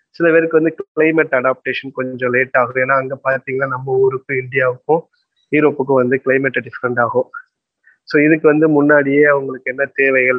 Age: 20-39